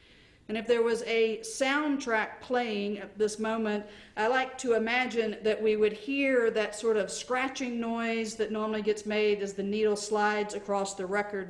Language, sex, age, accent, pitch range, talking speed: English, female, 50-69, American, 210-265 Hz, 175 wpm